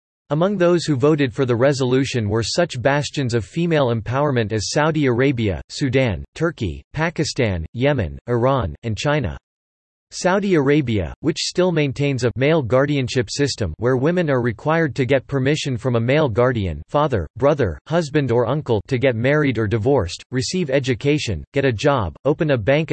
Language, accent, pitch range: English, American, 115-150 Hz